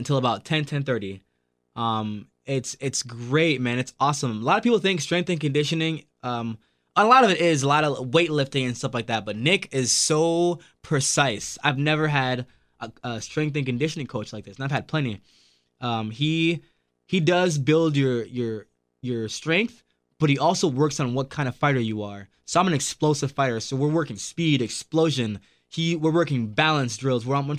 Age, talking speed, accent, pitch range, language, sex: 20-39, 200 wpm, American, 120-155 Hz, English, male